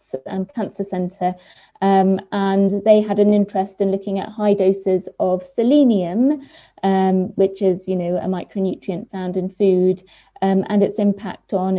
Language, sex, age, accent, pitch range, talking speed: English, female, 30-49, British, 185-210 Hz, 150 wpm